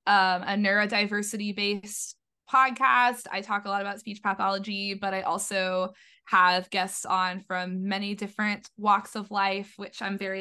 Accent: American